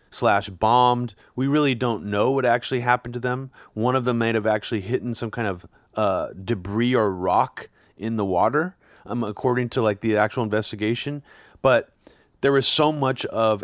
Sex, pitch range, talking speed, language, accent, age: male, 105-135 Hz, 180 wpm, English, American, 30-49